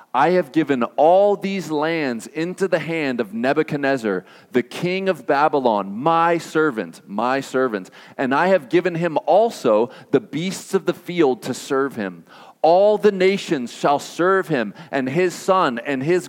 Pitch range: 130-180 Hz